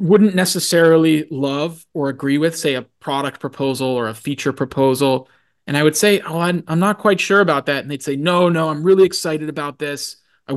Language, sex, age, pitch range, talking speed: English, male, 20-39, 140-165 Hz, 205 wpm